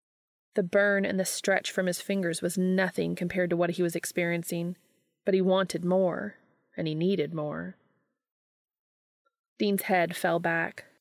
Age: 30-49